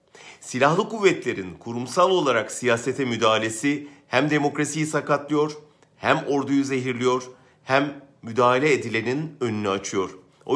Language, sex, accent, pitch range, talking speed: German, male, Turkish, 120-155 Hz, 100 wpm